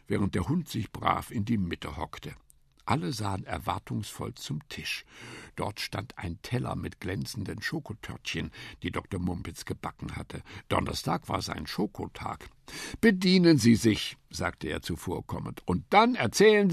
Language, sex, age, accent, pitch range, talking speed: German, male, 60-79, German, 95-160 Hz, 140 wpm